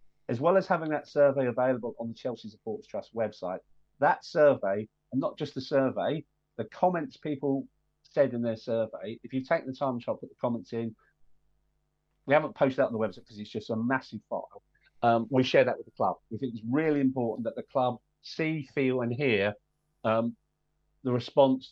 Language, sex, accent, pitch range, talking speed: English, male, British, 110-135 Hz, 200 wpm